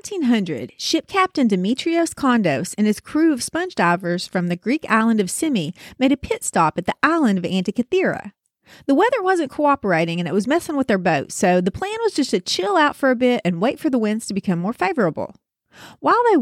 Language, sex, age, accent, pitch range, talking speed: English, female, 40-59, American, 195-290 Hz, 215 wpm